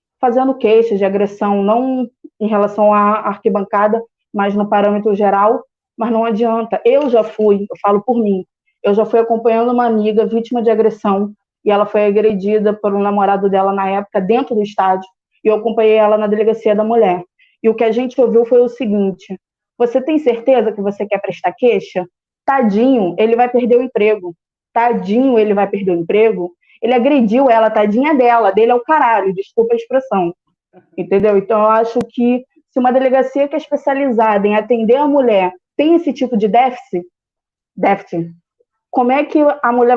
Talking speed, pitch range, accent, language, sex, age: 180 wpm, 205-245 Hz, Brazilian, Portuguese, female, 20-39